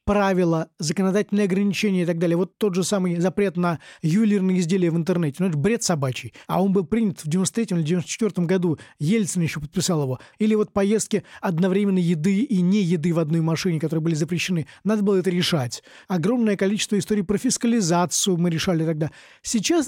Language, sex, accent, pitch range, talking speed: Russian, male, native, 170-210 Hz, 185 wpm